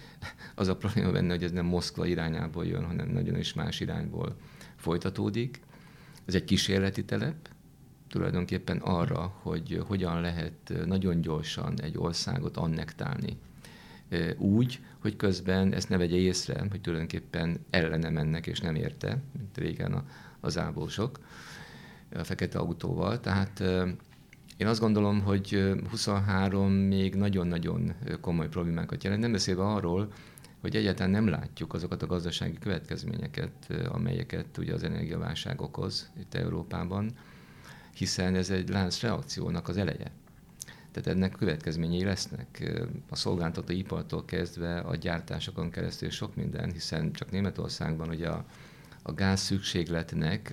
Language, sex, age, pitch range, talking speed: Hungarian, male, 50-69, 85-105 Hz, 130 wpm